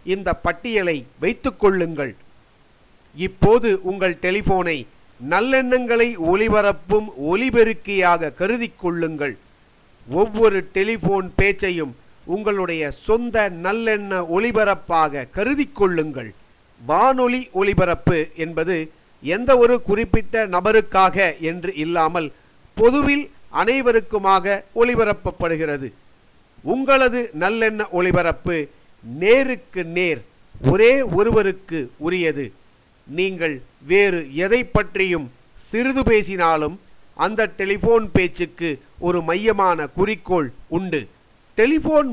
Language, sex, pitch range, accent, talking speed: Tamil, male, 165-220 Hz, native, 75 wpm